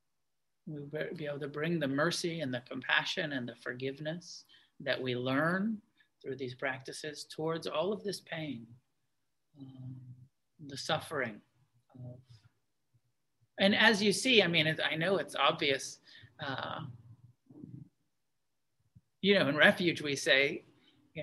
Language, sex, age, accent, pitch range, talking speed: English, male, 40-59, American, 135-175 Hz, 125 wpm